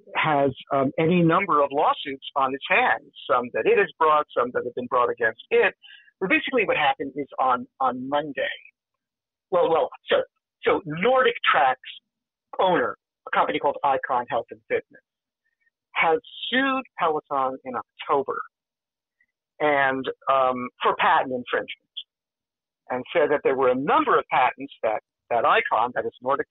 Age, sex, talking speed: 50-69, male, 155 wpm